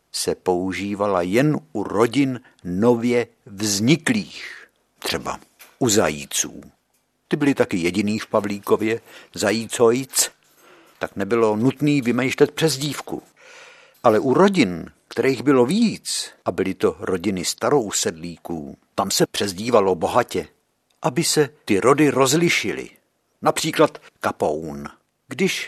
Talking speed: 105 wpm